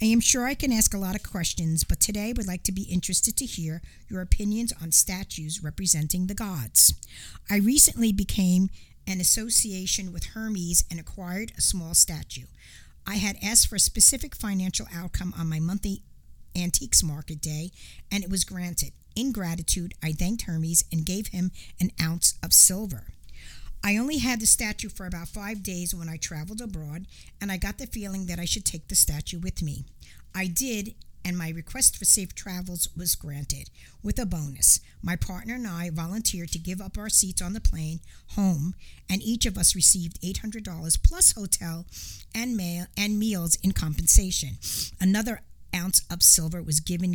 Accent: American